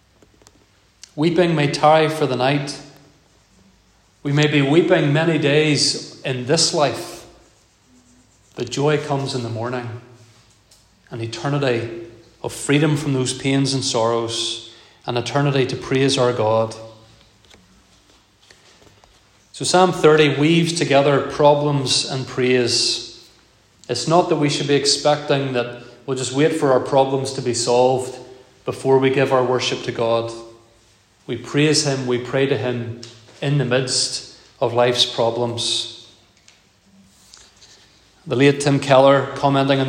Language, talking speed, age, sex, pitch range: English, 130 wpm, 30-49, male, 115-145 Hz